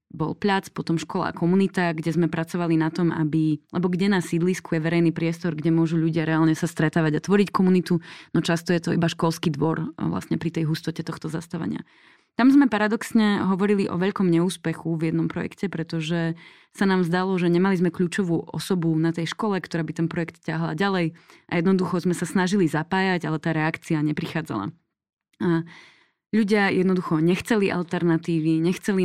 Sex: female